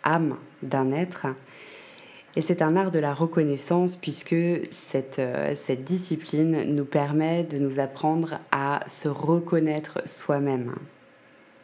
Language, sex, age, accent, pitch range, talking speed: French, female, 20-39, French, 155-185 Hz, 120 wpm